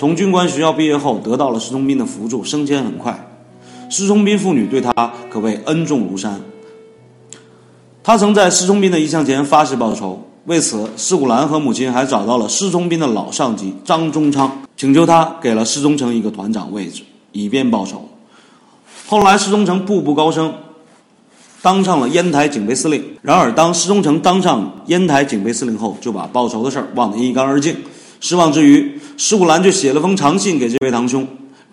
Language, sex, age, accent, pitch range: Chinese, male, 30-49, native, 130-195 Hz